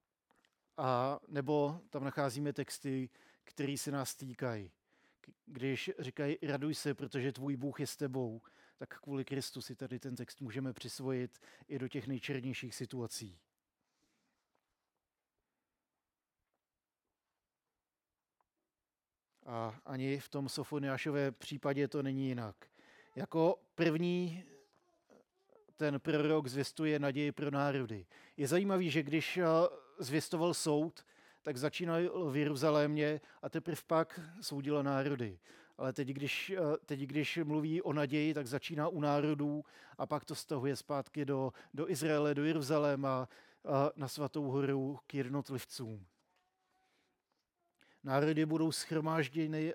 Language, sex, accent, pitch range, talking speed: Czech, male, native, 135-155 Hz, 115 wpm